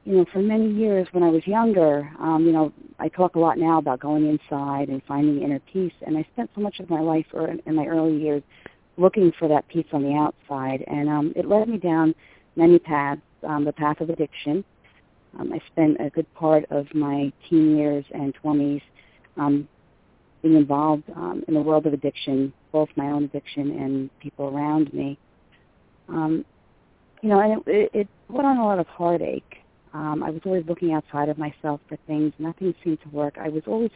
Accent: American